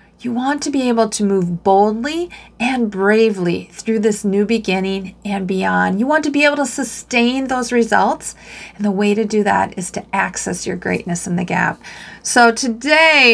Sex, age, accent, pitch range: female, 40-59, American, 195-245 Hz